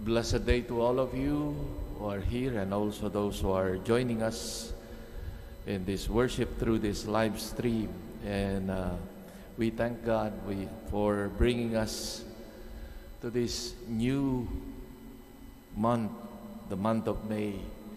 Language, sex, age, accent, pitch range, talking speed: English, male, 50-69, Filipino, 105-120 Hz, 135 wpm